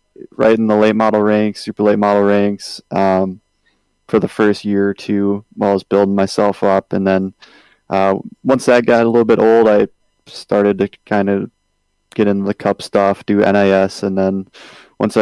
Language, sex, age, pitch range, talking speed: English, male, 20-39, 95-105 Hz, 190 wpm